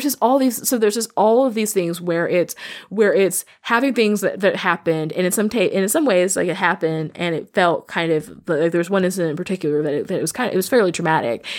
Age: 20-39